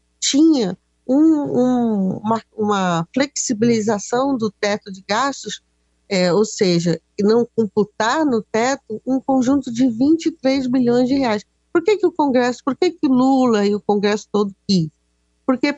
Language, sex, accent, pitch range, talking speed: Portuguese, female, Brazilian, 205-265 Hz, 135 wpm